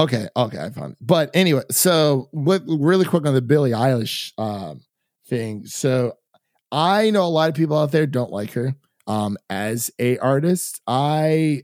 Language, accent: English, American